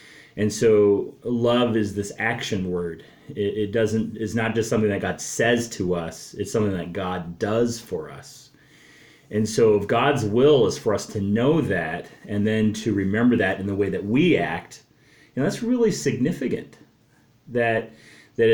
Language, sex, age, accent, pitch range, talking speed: English, male, 30-49, American, 100-120 Hz, 180 wpm